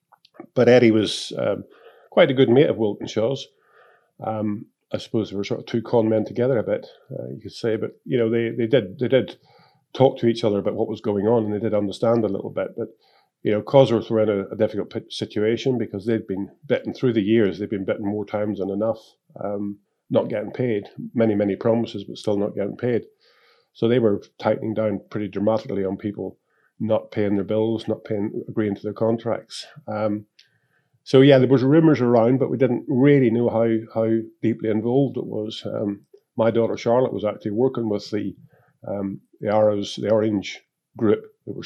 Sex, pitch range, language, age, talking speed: male, 105-120 Hz, English, 40-59, 205 wpm